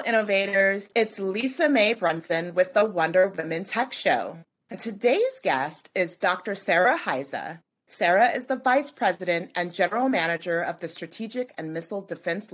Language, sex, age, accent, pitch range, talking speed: English, female, 30-49, American, 160-230 Hz, 155 wpm